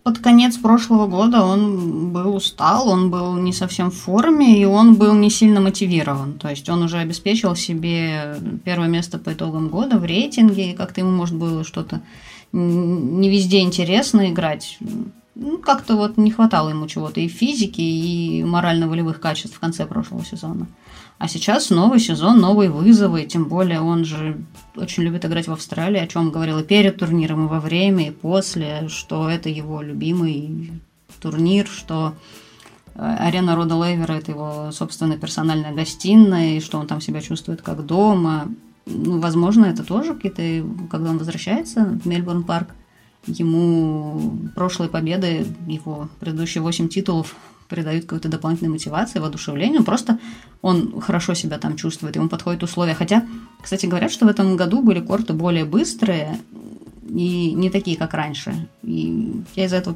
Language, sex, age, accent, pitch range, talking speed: Russian, female, 20-39, native, 165-205 Hz, 160 wpm